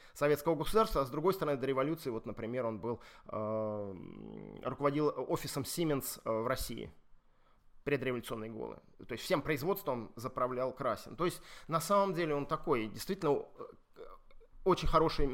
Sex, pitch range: male, 130-175 Hz